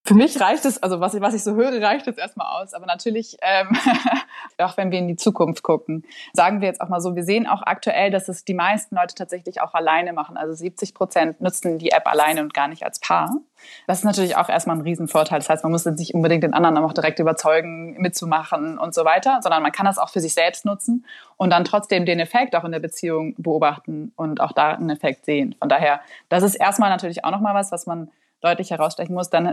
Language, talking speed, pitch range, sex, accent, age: German, 240 wpm, 160-195 Hz, female, German, 20-39